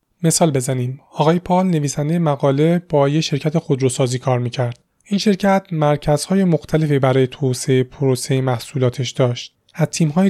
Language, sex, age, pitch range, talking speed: Persian, male, 30-49, 130-165 Hz, 135 wpm